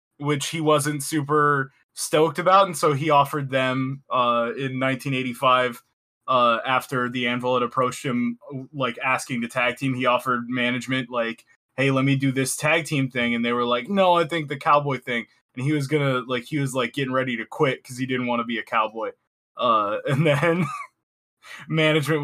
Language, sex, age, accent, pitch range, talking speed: English, male, 20-39, American, 120-150 Hz, 195 wpm